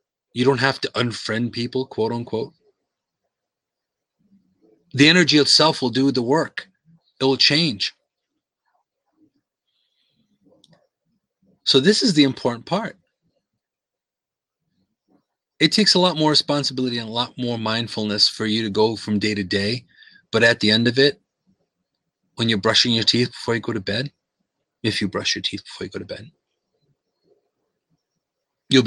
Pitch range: 115-155 Hz